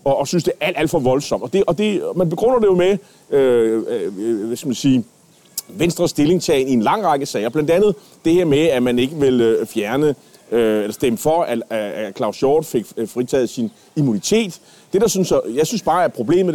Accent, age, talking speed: native, 30-49, 220 wpm